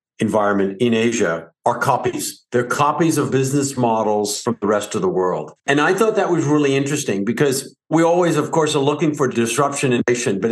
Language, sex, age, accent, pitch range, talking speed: English, male, 50-69, American, 105-140 Hz, 200 wpm